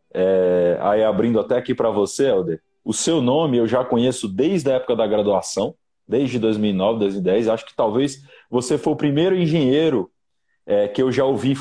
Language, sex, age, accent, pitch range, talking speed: Portuguese, male, 20-39, Brazilian, 105-135 Hz, 180 wpm